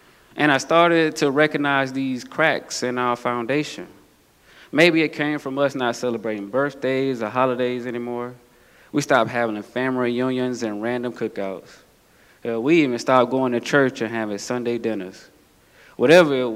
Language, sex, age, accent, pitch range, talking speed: English, male, 20-39, American, 115-135 Hz, 150 wpm